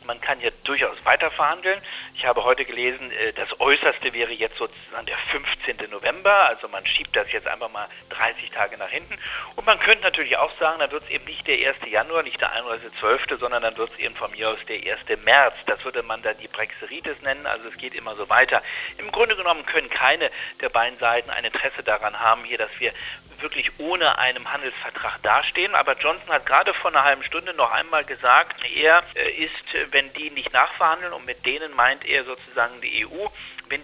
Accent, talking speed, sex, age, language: German, 205 wpm, male, 40-59, German